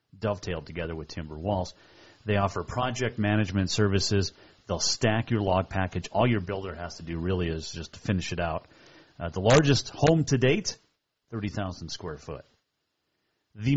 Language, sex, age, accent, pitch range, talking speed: English, male, 40-59, American, 95-125 Hz, 165 wpm